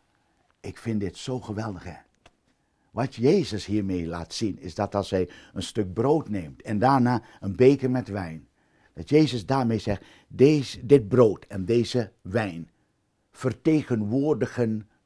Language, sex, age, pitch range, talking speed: Dutch, male, 60-79, 100-145 Hz, 140 wpm